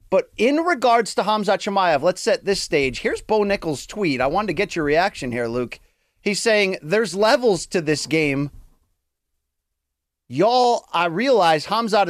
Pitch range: 165-245 Hz